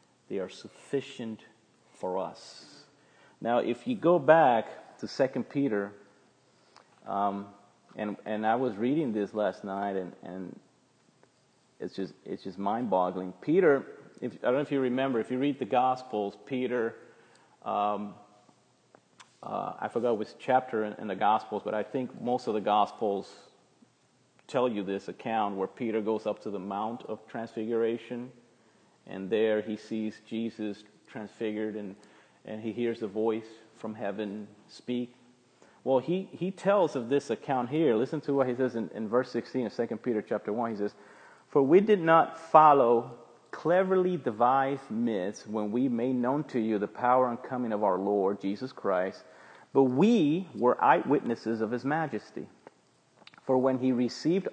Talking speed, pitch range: 160 wpm, 105-130 Hz